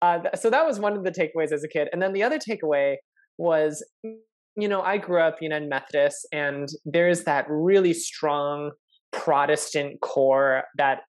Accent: American